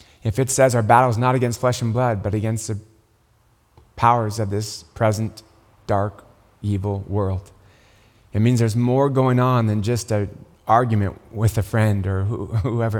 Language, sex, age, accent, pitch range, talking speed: English, male, 30-49, American, 100-125 Hz, 165 wpm